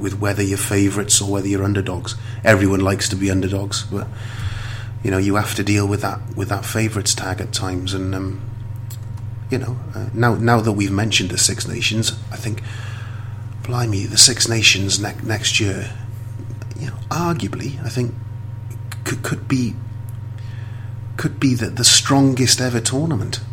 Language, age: English, 40-59